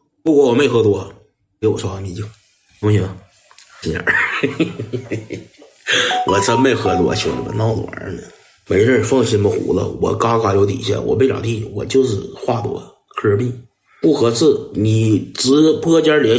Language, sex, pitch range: Chinese, male, 115-175 Hz